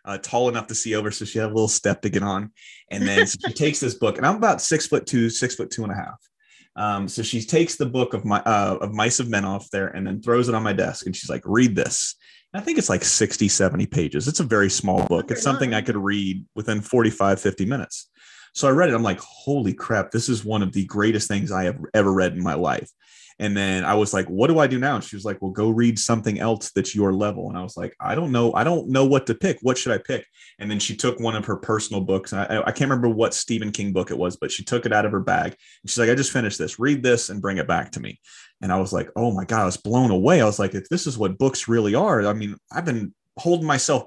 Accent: American